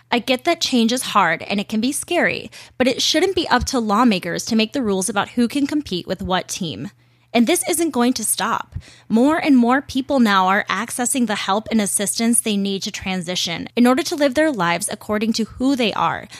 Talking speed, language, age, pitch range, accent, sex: 225 wpm, English, 20-39, 190-250 Hz, American, female